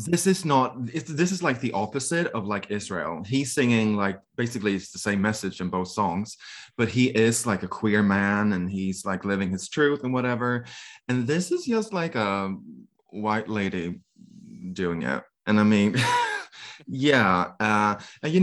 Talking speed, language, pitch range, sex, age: 180 wpm, English, 100-140 Hz, male, 20-39